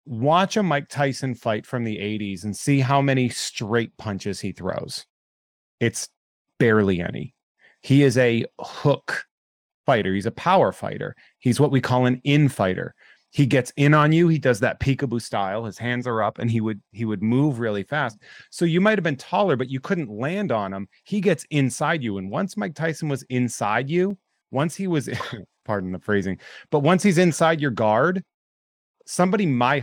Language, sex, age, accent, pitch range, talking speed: English, male, 30-49, American, 110-145 Hz, 190 wpm